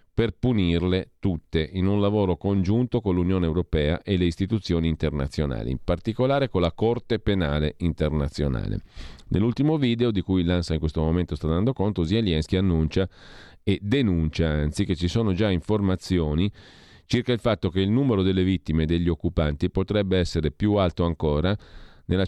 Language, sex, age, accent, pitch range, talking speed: Italian, male, 40-59, native, 80-100 Hz, 160 wpm